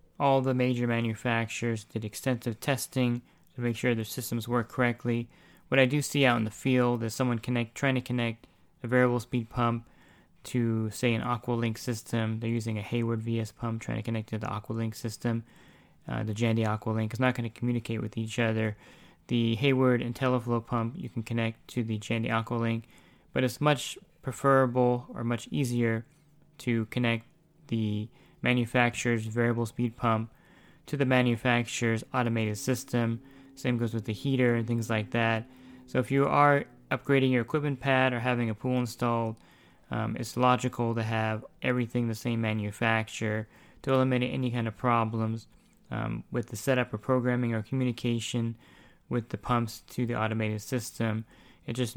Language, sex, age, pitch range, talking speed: English, male, 20-39, 115-125 Hz, 170 wpm